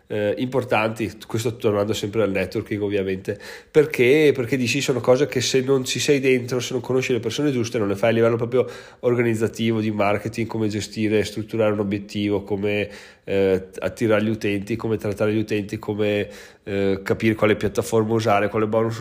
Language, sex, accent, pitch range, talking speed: Italian, male, native, 105-130 Hz, 175 wpm